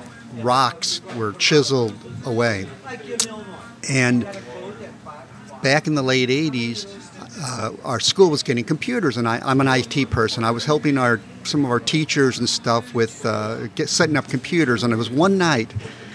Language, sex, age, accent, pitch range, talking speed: English, male, 50-69, American, 115-150 Hz, 160 wpm